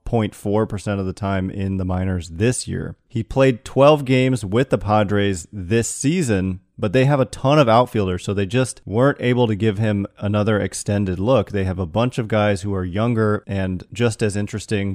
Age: 30-49